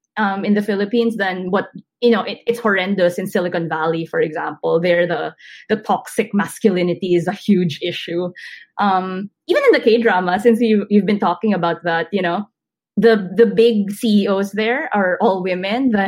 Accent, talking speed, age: Filipino, 175 wpm, 20-39